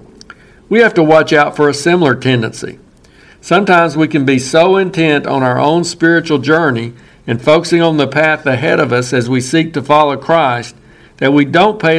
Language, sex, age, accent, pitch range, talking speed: English, male, 60-79, American, 140-165 Hz, 190 wpm